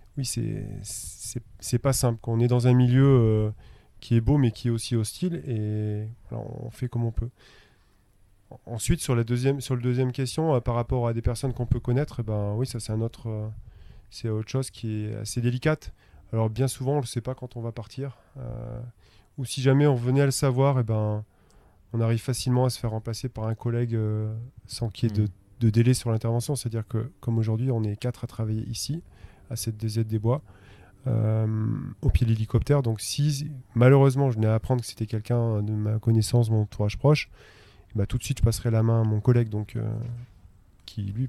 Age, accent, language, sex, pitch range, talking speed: 20-39, French, French, male, 110-125 Hz, 220 wpm